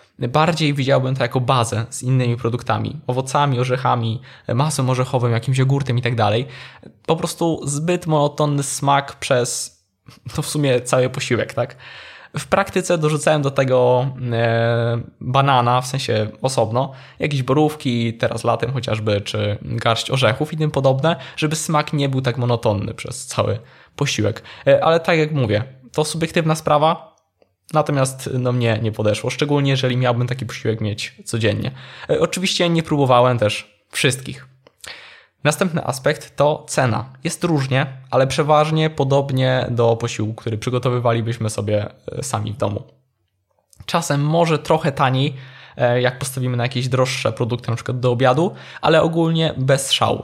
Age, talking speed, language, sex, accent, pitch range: 20-39, 135 wpm, Polish, male, native, 115-145 Hz